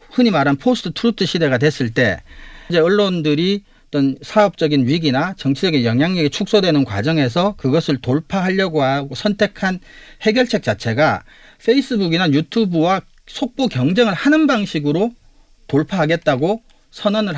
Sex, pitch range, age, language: male, 140-200 Hz, 40-59, Korean